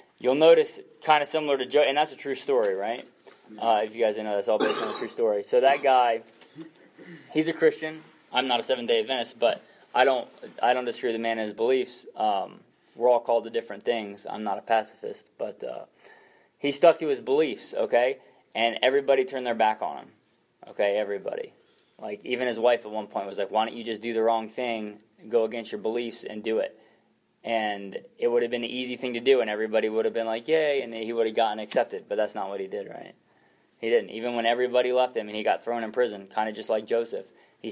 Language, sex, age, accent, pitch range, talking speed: English, male, 20-39, American, 110-170 Hz, 240 wpm